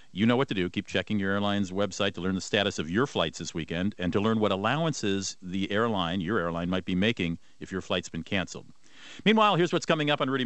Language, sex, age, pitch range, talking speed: English, male, 50-69, 95-135 Hz, 245 wpm